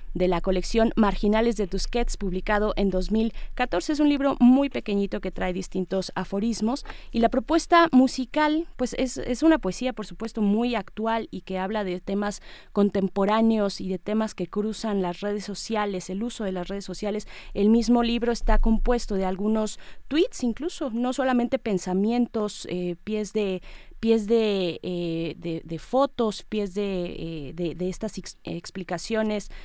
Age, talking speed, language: 20-39, 155 wpm, Spanish